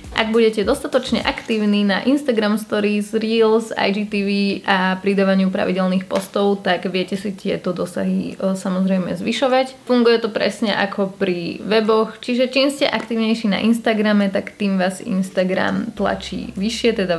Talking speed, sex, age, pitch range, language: 135 wpm, female, 20-39, 185-215 Hz, Slovak